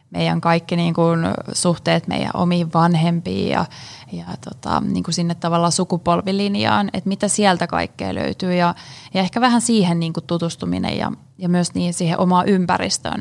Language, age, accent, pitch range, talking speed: Finnish, 20-39, native, 165-190 Hz, 150 wpm